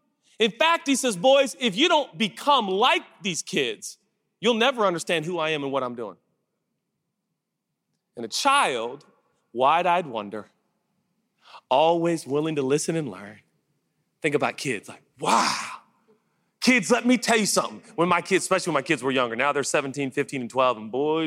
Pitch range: 135-195 Hz